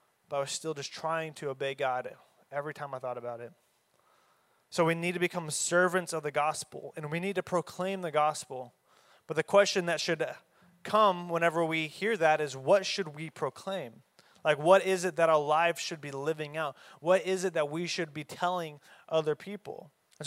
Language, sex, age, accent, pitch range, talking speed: English, male, 20-39, American, 150-180 Hz, 200 wpm